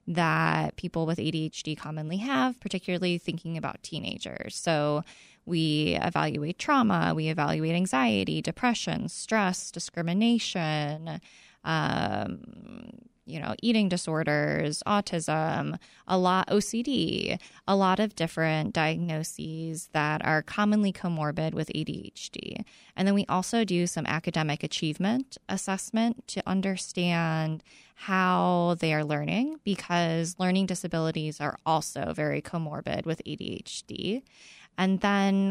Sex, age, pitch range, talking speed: female, 20-39, 160-200 Hz, 110 wpm